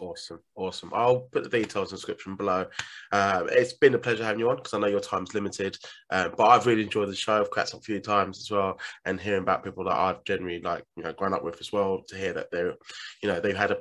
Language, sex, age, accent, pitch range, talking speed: English, male, 20-39, British, 100-130 Hz, 275 wpm